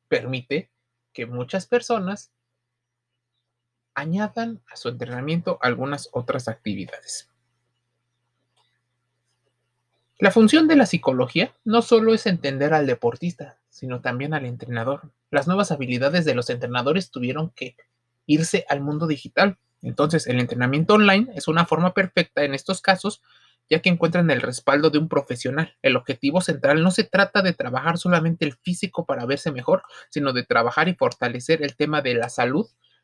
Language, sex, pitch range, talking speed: Spanish, male, 125-180 Hz, 145 wpm